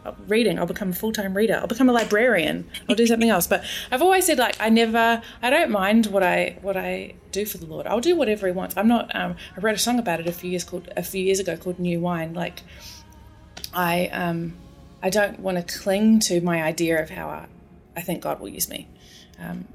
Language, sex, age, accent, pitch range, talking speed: English, female, 20-39, Australian, 165-195 Hz, 235 wpm